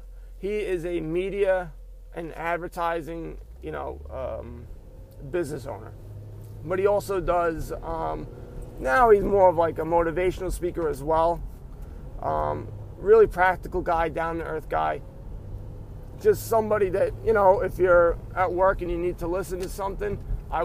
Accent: American